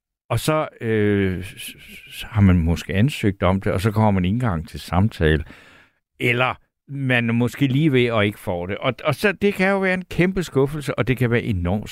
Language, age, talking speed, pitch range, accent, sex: Danish, 60-79, 210 wpm, 105-145 Hz, native, male